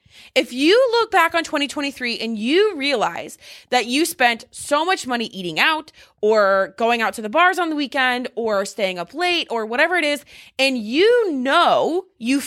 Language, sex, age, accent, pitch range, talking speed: English, female, 20-39, American, 225-315 Hz, 185 wpm